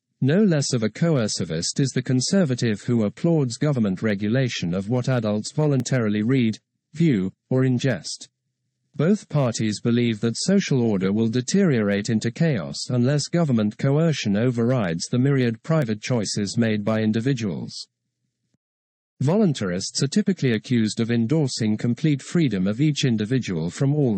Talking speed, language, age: 135 wpm, English, 50-69